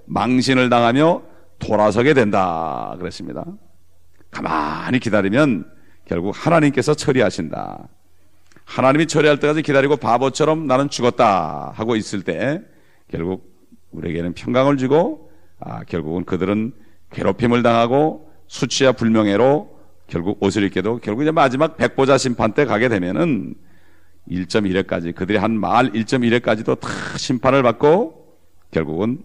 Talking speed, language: 105 wpm, English